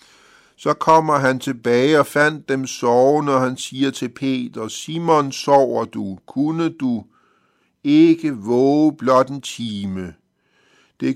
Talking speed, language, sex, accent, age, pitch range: 130 wpm, Danish, male, native, 50-69, 125-150 Hz